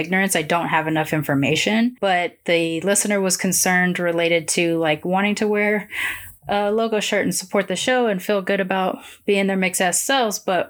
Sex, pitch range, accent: female, 160-185 Hz, American